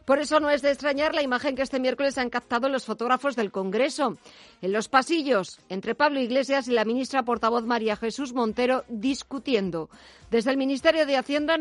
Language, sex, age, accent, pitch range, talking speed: Spanish, female, 40-59, Spanish, 225-275 Hz, 185 wpm